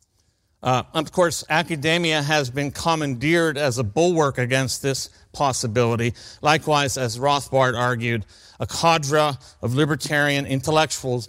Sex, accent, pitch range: male, American, 115-155 Hz